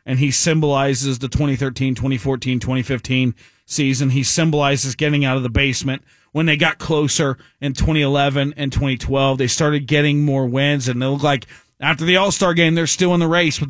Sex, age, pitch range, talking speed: male, 40-59, 135-170 Hz, 185 wpm